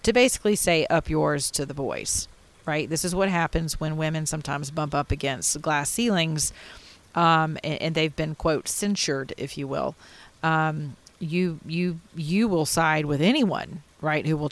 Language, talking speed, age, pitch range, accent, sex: English, 170 wpm, 40-59, 150-175 Hz, American, female